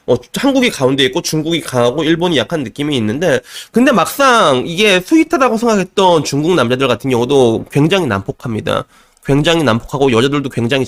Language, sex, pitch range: Korean, male, 120-195 Hz